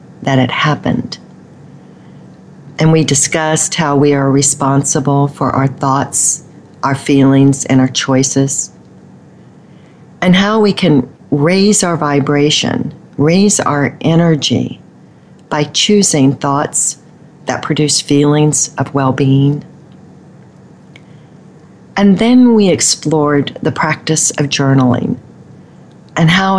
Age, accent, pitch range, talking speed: 40-59, American, 135-165 Hz, 105 wpm